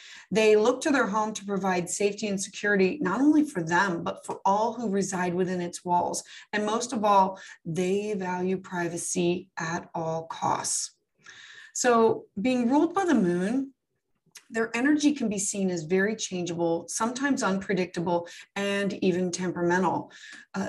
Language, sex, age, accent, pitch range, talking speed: English, female, 30-49, American, 180-225 Hz, 150 wpm